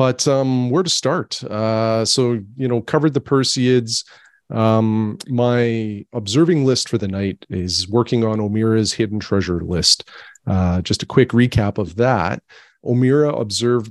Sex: male